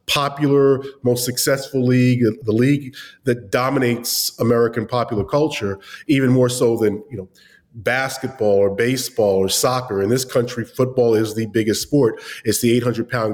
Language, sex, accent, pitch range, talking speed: English, male, American, 115-140 Hz, 150 wpm